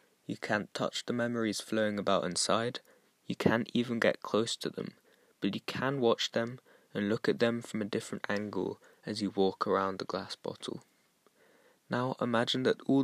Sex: male